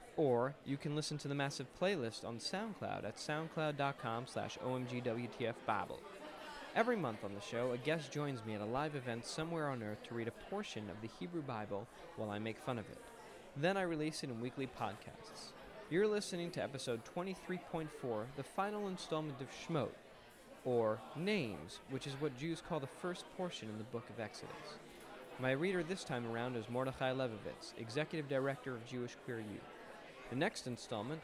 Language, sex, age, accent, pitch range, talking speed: English, male, 20-39, American, 115-155 Hz, 175 wpm